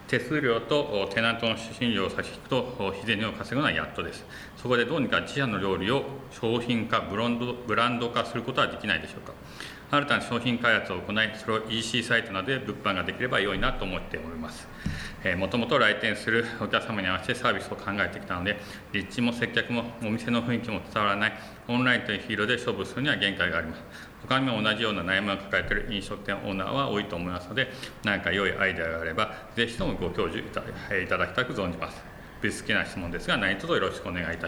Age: 40-59